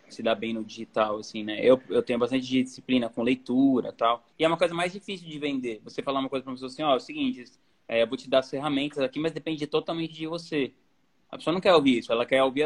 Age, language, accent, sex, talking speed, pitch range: 20-39, Portuguese, Brazilian, male, 285 wpm, 125-155 Hz